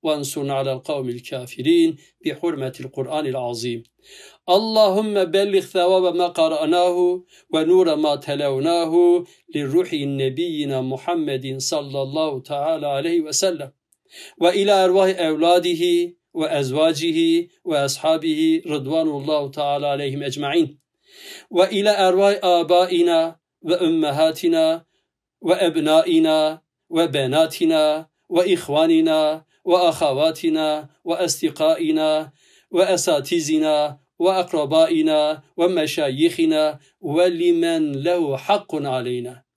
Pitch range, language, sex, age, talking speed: 145-195 Hz, Turkish, male, 50-69, 75 wpm